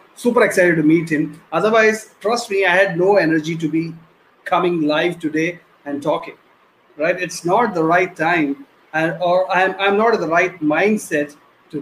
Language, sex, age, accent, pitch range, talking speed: English, male, 30-49, Indian, 175-230 Hz, 175 wpm